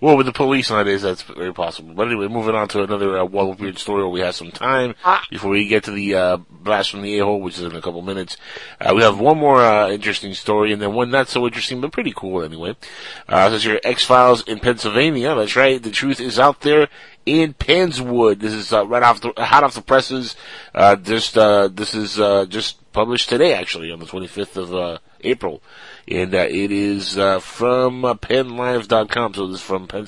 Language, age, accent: English, 30-49, American